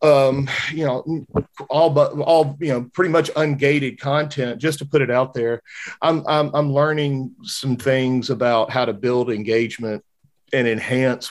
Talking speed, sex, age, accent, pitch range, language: 165 wpm, male, 40-59, American, 110-130 Hz, English